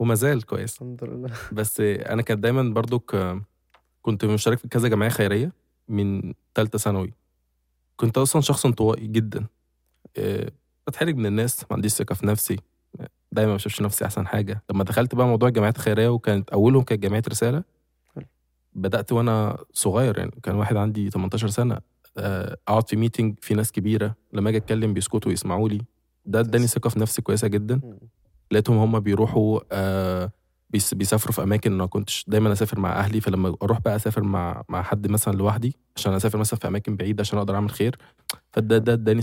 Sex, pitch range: male, 100-120 Hz